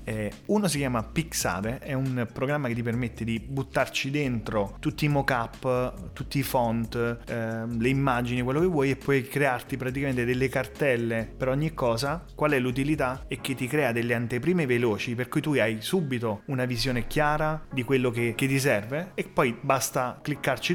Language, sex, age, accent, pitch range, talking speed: Italian, male, 30-49, native, 115-135 Hz, 180 wpm